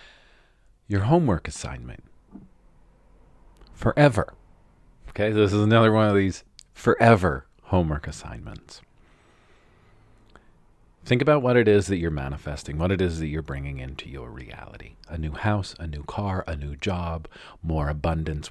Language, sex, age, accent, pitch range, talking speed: English, male, 40-59, American, 75-105 Hz, 135 wpm